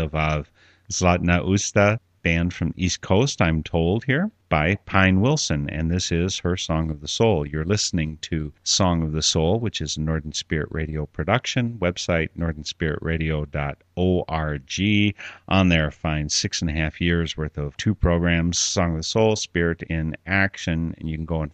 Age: 40-59